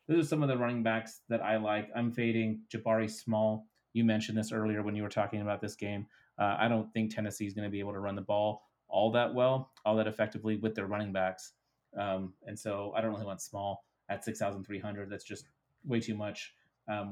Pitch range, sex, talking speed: 105-115 Hz, male, 230 wpm